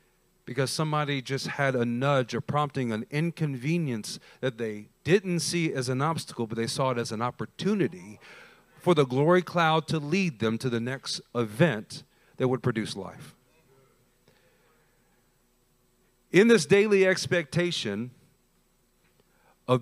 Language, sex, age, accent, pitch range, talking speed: English, male, 40-59, American, 135-185 Hz, 135 wpm